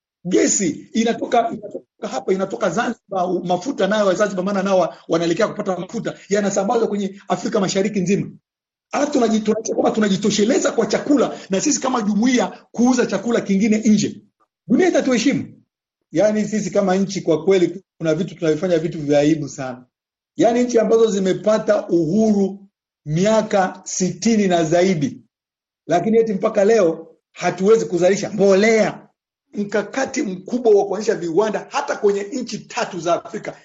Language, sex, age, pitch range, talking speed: Swahili, male, 50-69, 190-235 Hz, 130 wpm